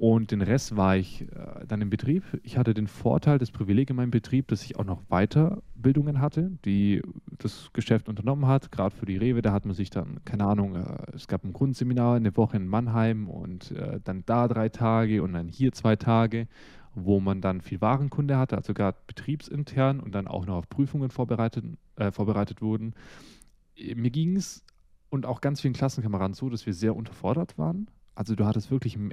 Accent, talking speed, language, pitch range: German, 195 wpm, German, 105-135 Hz